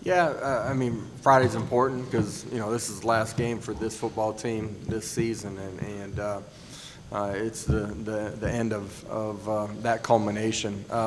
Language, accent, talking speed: English, American, 185 wpm